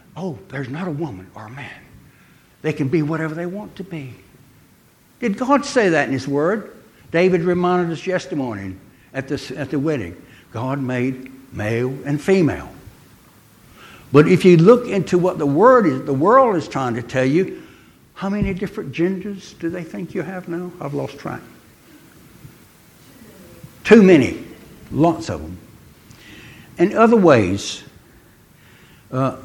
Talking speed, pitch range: 150 wpm, 125-175 Hz